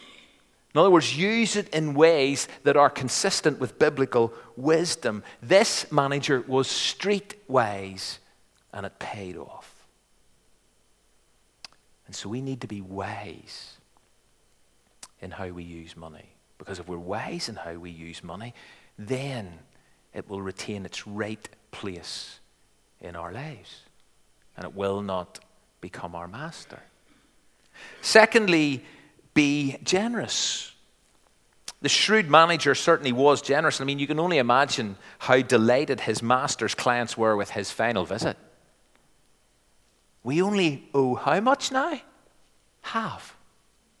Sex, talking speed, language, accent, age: male, 125 wpm, English, British, 40-59